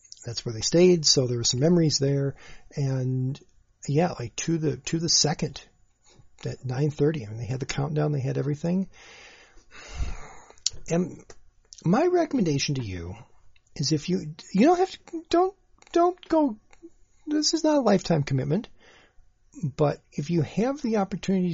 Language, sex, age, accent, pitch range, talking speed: English, male, 40-59, American, 120-175 Hz, 160 wpm